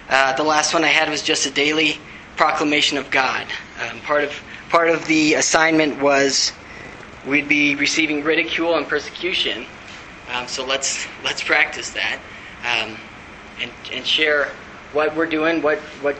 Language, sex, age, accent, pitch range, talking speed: English, male, 20-39, American, 135-160 Hz, 155 wpm